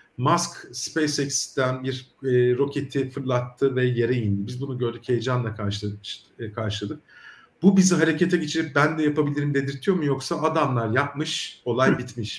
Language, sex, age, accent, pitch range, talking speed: Turkish, male, 50-69, native, 120-150 Hz, 135 wpm